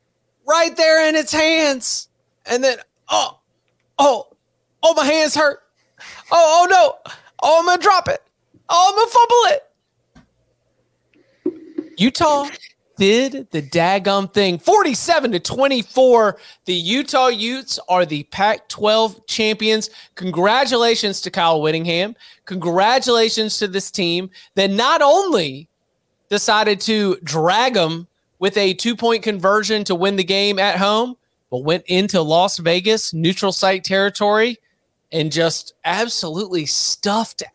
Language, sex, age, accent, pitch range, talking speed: English, male, 30-49, American, 180-255 Hz, 125 wpm